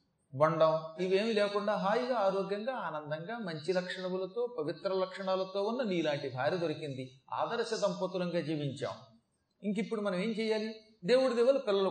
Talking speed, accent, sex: 130 wpm, native, male